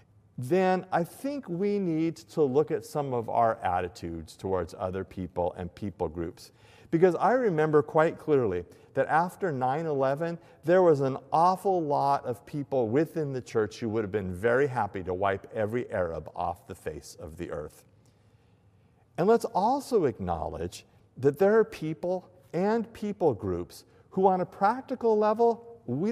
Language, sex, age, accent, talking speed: English, male, 50-69, American, 160 wpm